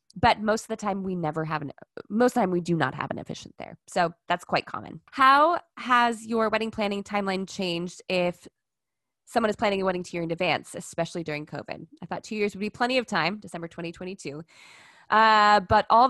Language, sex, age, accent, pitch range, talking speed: English, female, 20-39, American, 170-215 Hz, 215 wpm